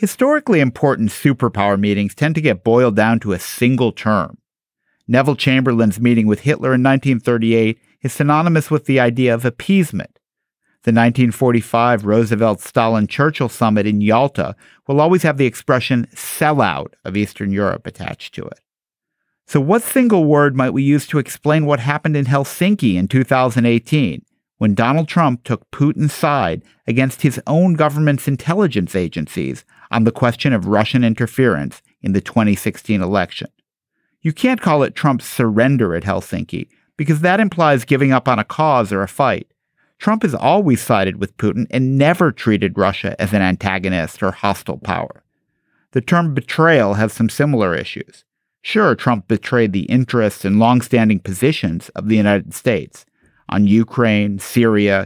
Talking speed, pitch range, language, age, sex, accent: 150 wpm, 105-145 Hz, English, 50-69, male, American